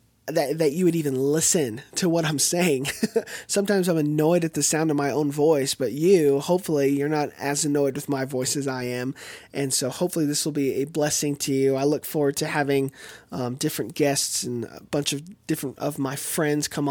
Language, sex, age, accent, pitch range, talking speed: English, male, 20-39, American, 140-160 Hz, 215 wpm